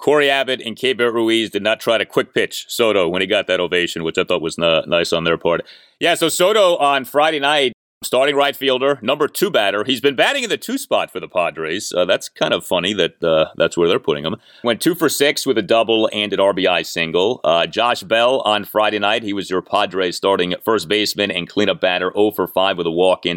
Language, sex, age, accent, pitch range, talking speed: English, male, 30-49, American, 100-145 Hz, 240 wpm